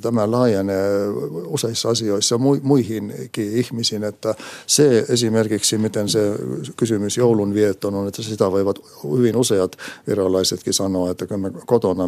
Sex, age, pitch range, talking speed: male, 60-79, 95-115 Hz, 120 wpm